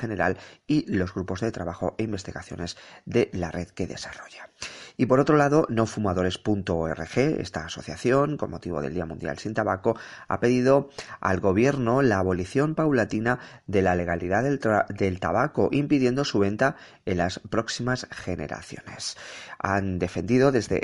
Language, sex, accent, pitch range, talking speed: Spanish, male, Spanish, 90-115 Hz, 145 wpm